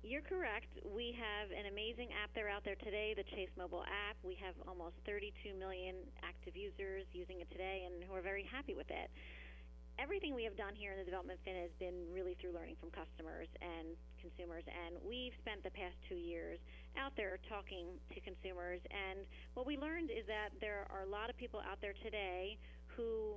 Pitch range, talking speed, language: 180-220 Hz, 200 wpm, English